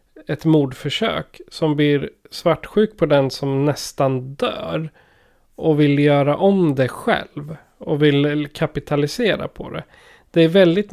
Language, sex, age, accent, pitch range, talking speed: Swedish, male, 30-49, native, 130-160 Hz, 130 wpm